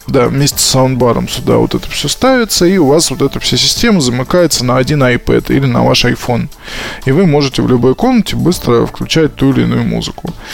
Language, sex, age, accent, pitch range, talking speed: Russian, male, 20-39, native, 120-155 Hz, 205 wpm